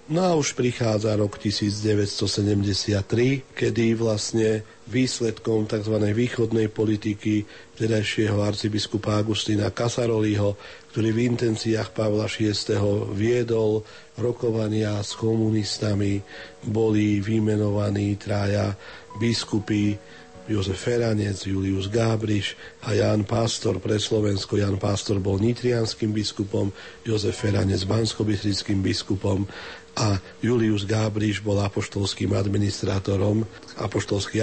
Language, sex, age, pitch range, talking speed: Slovak, male, 40-59, 100-110 Hz, 95 wpm